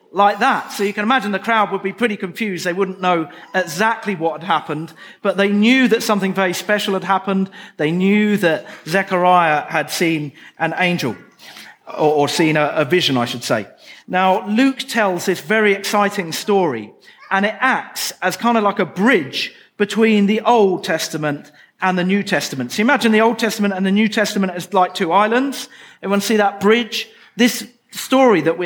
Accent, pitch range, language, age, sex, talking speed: British, 180-220 Hz, English, 40-59, male, 185 wpm